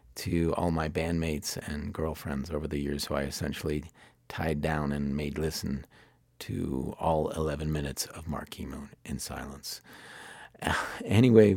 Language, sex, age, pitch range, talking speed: English, male, 40-59, 75-90 Hz, 140 wpm